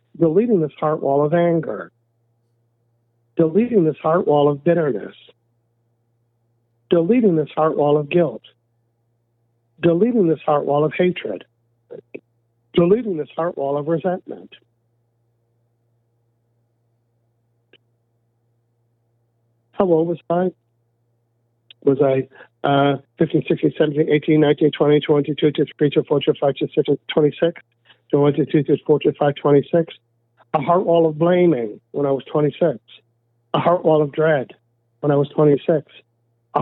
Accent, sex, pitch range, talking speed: American, male, 115-155 Hz, 115 wpm